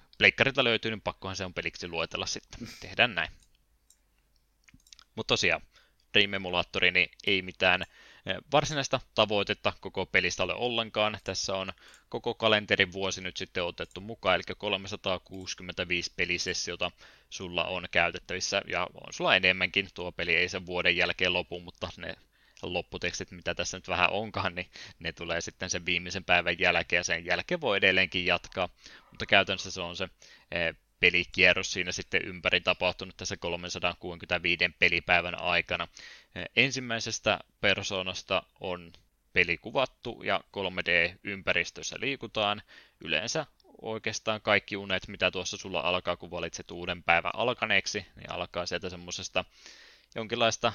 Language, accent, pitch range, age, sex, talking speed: Finnish, native, 90-100 Hz, 20-39, male, 130 wpm